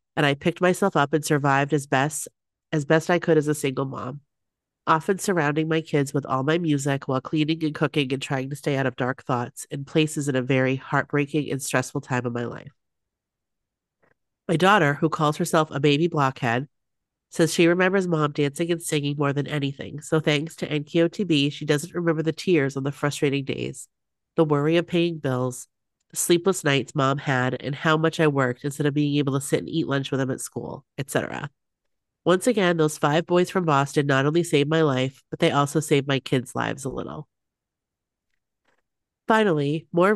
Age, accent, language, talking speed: 30-49, American, English, 195 wpm